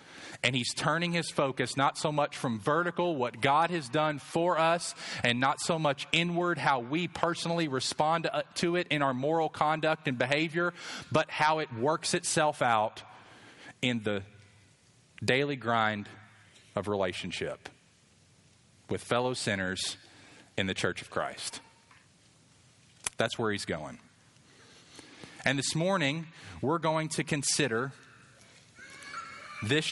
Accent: American